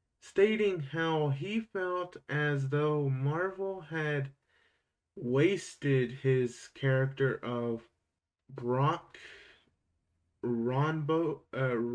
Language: English